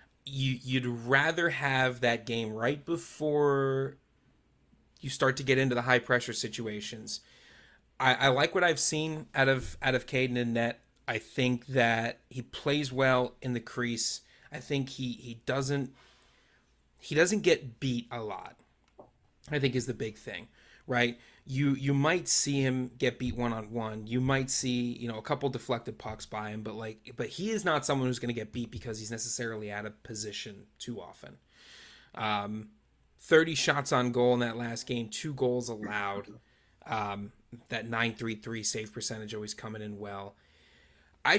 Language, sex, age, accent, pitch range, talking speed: English, male, 30-49, American, 110-135 Hz, 175 wpm